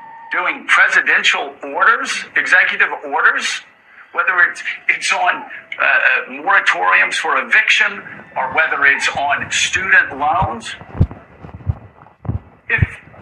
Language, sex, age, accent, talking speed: English, male, 50-69, American, 90 wpm